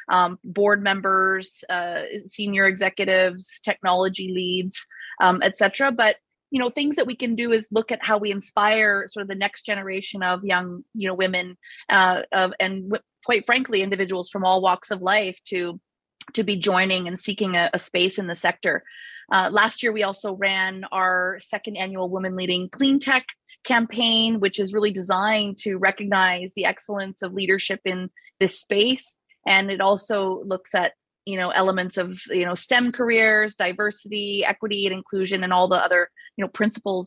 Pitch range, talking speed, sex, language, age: 185-215 Hz, 175 wpm, female, English, 30-49